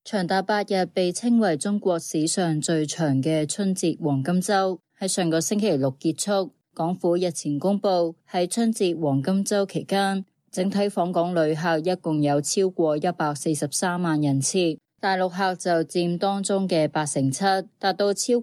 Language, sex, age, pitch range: Chinese, female, 20-39, 160-195 Hz